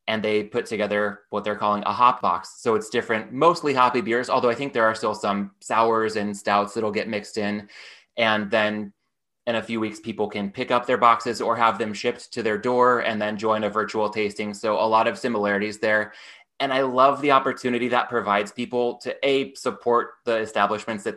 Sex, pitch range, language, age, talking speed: male, 105-120 Hz, English, 20-39, 215 wpm